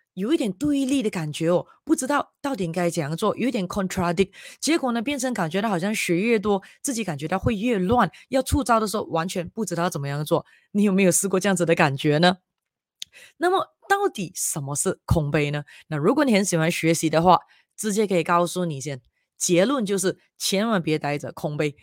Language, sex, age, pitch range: Chinese, female, 20-39, 160-220 Hz